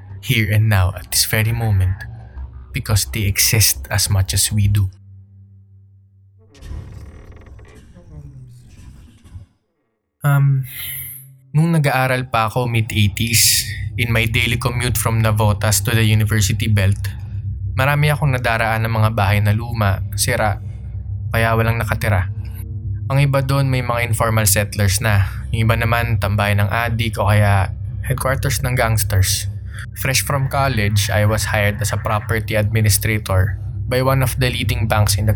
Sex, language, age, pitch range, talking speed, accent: male, Filipino, 20-39, 100-115 Hz, 140 wpm, native